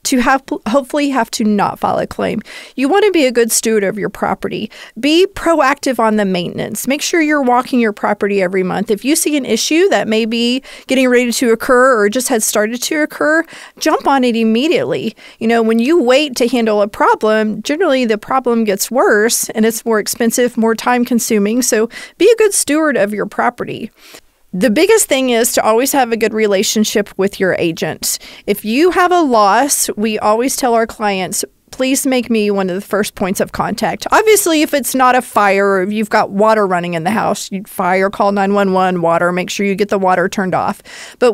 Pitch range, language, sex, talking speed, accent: 210-275 Hz, English, female, 205 wpm, American